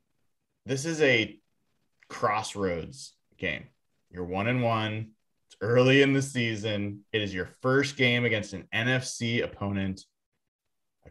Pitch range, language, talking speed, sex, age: 100-130 Hz, English, 130 wpm, male, 30-49